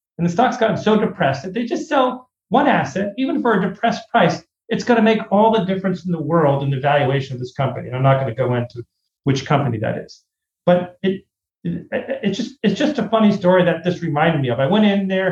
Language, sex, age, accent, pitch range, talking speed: English, male, 40-59, American, 130-170 Hz, 240 wpm